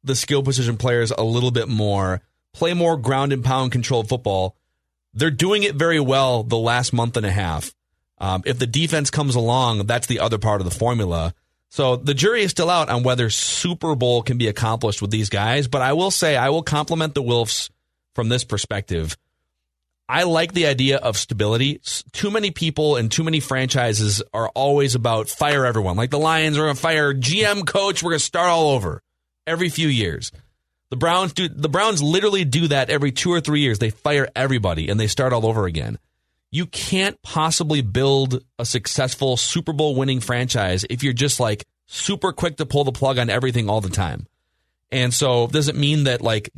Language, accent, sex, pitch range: English, American, male, 115-155 Hz